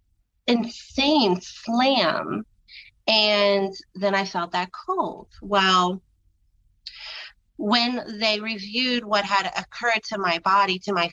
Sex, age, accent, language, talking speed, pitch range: female, 30-49, American, English, 110 wpm, 170-215 Hz